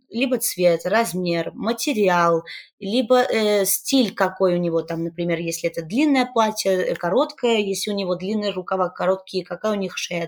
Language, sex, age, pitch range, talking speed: Russian, female, 20-39, 180-230 Hz, 160 wpm